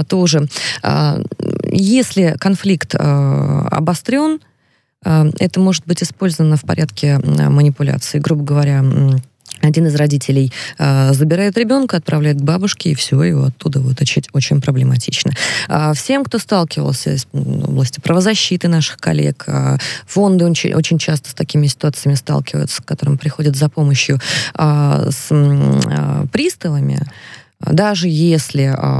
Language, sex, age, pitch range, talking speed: Russian, female, 20-39, 135-170 Hz, 105 wpm